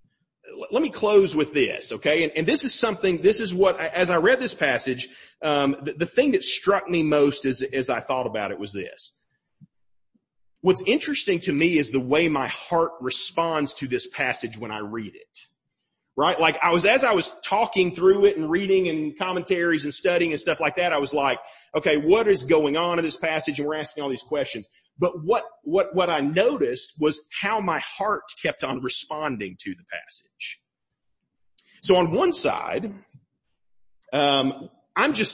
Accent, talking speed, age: American, 190 wpm, 40-59